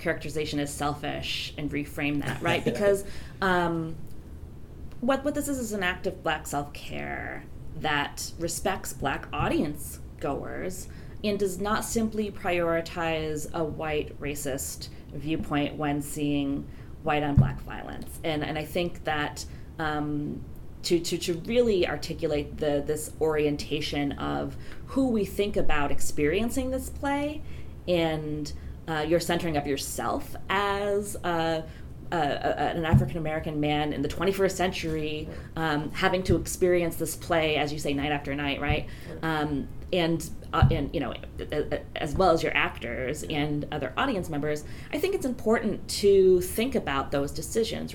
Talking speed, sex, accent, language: 145 wpm, female, American, English